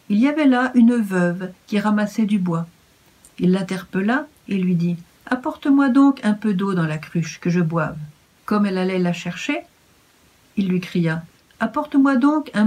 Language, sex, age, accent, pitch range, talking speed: French, female, 50-69, French, 180-235 Hz, 190 wpm